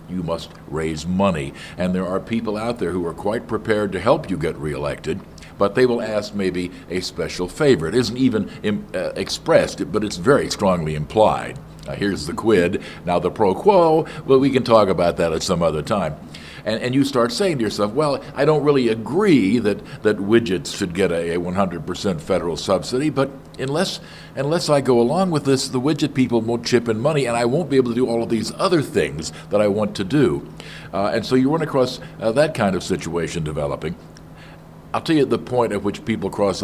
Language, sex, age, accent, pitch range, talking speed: English, male, 60-79, American, 95-135 Hz, 215 wpm